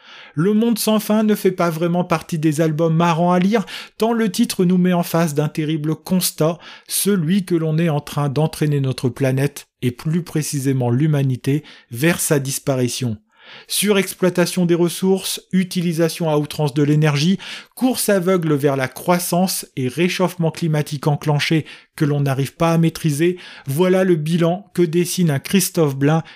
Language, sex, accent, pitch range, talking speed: French, male, French, 145-185 Hz, 160 wpm